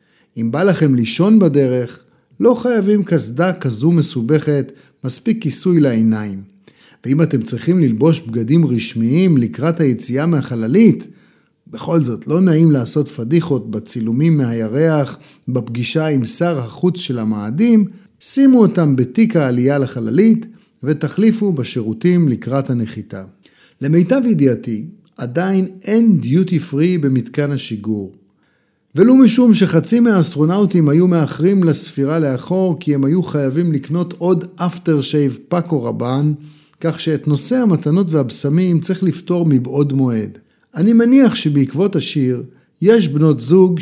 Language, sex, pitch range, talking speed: Hebrew, male, 130-180 Hz, 120 wpm